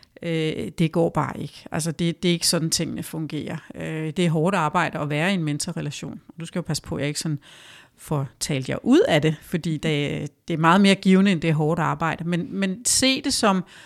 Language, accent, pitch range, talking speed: Danish, native, 155-185 Hz, 215 wpm